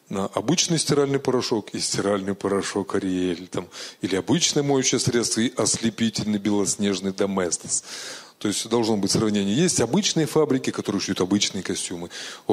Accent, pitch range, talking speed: native, 100-130 Hz, 135 wpm